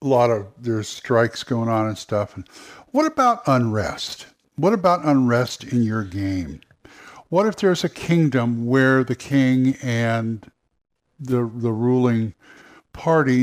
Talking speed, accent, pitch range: 145 wpm, American, 110-150 Hz